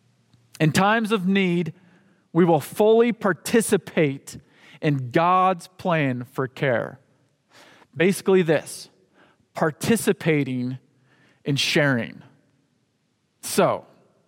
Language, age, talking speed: English, 40-59, 80 wpm